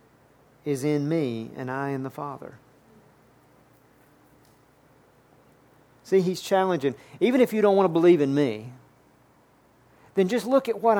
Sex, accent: male, American